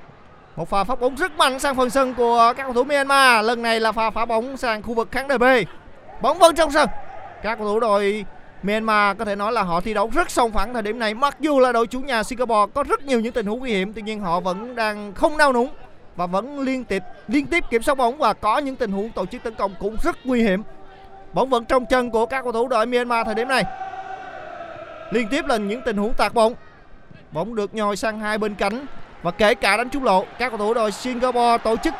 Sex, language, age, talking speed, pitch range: male, Vietnamese, 20-39, 250 wpm, 205-260 Hz